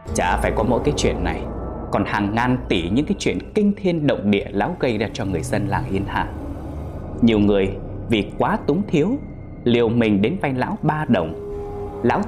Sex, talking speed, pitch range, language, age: male, 200 wpm, 100-115 Hz, Vietnamese, 20-39